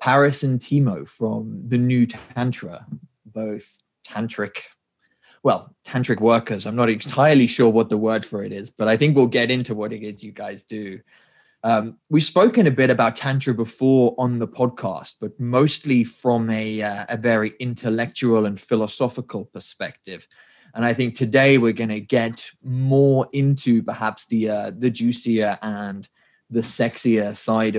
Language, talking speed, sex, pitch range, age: English, 160 wpm, male, 110-130 Hz, 20-39